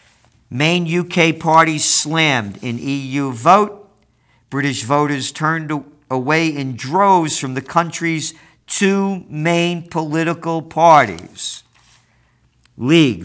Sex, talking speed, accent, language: male, 95 wpm, American, English